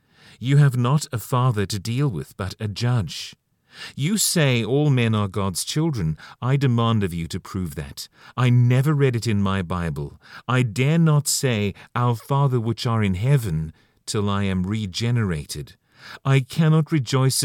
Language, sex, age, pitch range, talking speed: English, male, 40-59, 100-135 Hz, 170 wpm